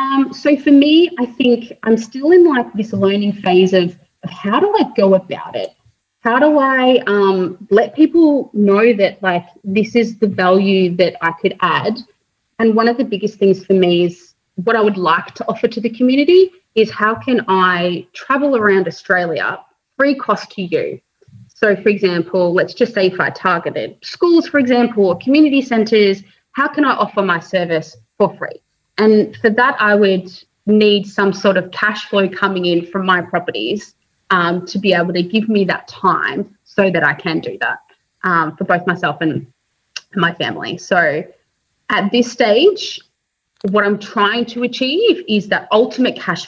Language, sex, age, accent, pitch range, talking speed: English, female, 30-49, Australian, 185-245 Hz, 180 wpm